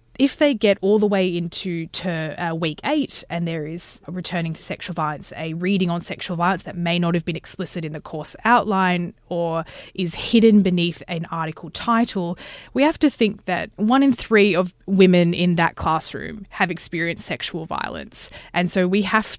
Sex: female